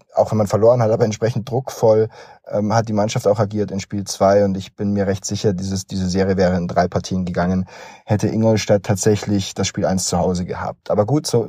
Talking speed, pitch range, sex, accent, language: 225 wpm, 100-115 Hz, male, German, German